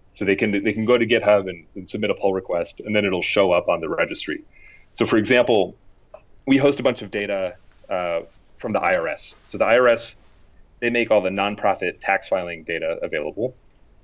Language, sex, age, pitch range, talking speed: English, male, 30-49, 90-115 Hz, 200 wpm